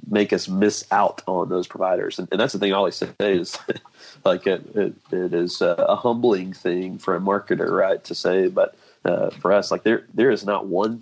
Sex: male